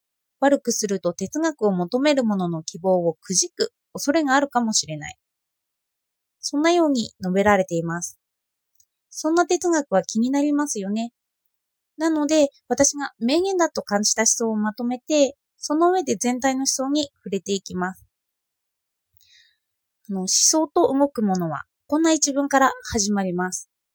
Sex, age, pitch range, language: female, 20-39, 195-295 Hz, Japanese